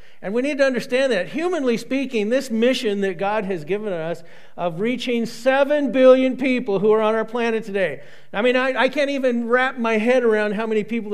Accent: American